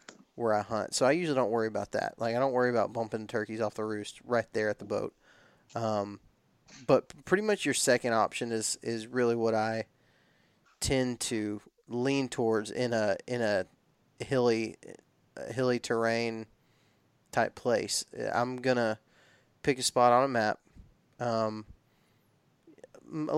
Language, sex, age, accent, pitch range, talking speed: English, male, 20-39, American, 110-125 Hz, 155 wpm